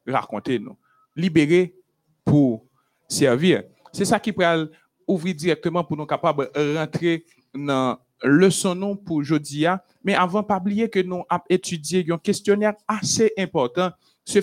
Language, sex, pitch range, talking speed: French, male, 135-180 Hz, 135 wpm